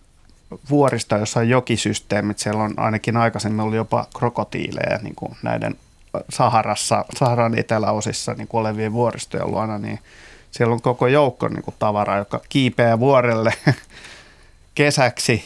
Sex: male